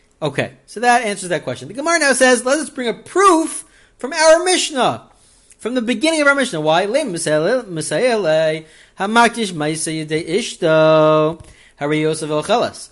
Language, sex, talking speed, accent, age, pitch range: English, male, 120 wpm, American, 30-49, 170-275 Hz